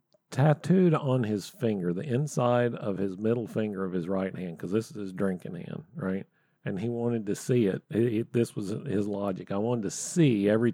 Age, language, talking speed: 50-69, English, 210 wpm